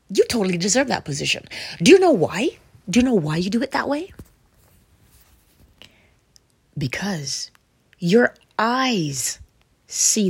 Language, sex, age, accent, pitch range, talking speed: English, female, 30-49, American, 140-205 Hz, 130 wpm